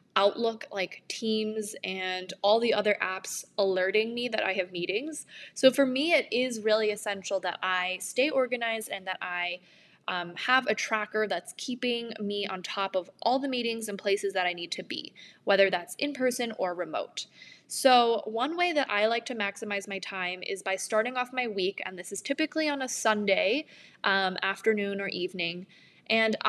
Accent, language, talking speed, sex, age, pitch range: American, English, 185 wpm, female, 10-29, 195-245 Hz